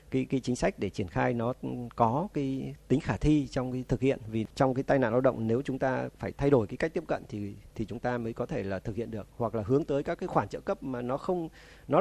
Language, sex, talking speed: Vietnamese, male, 290 wpm